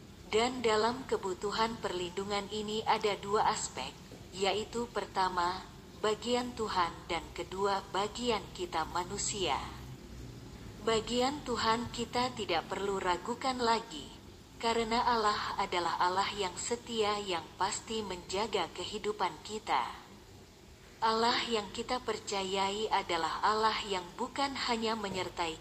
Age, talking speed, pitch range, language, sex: 40-59, 105 wpm, 185-230 Hz, Indonesian, female